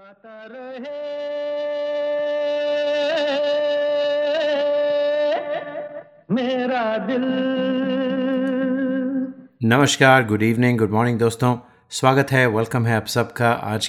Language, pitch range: Hindi, 105-140 Hz